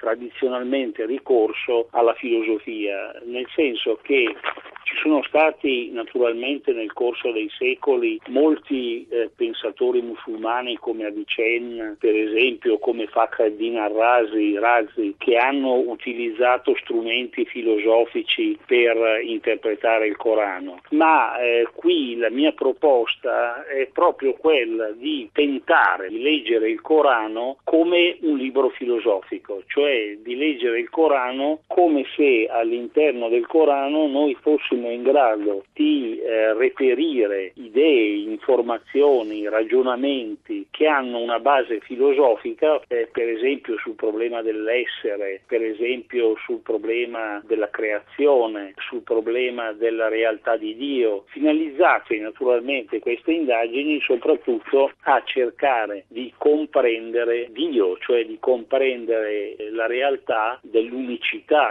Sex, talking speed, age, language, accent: male, 115 wpm, 50-69, Italian, native